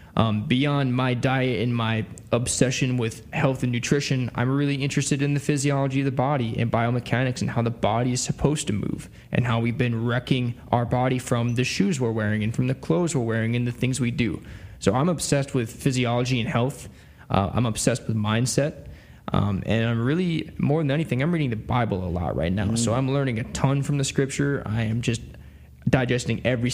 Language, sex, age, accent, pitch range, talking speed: English, male, 20-39, American, 115-135 Hz, 210 wpm